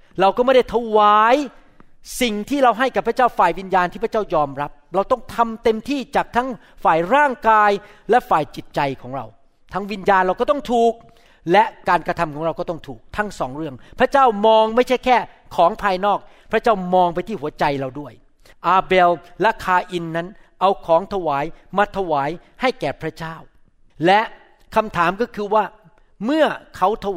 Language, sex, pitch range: Thai, male, 155-225 Hz